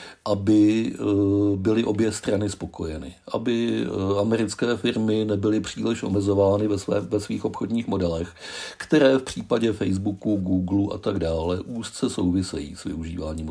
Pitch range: 90-115 Hz